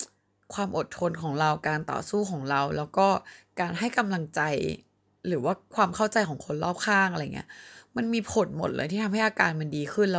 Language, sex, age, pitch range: Thai, female, 20-39, 150-195 Hz